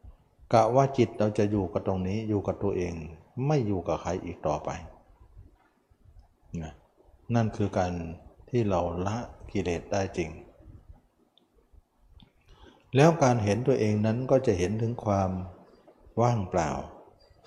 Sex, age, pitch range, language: male, 60-79, 90-110 Hz, Thai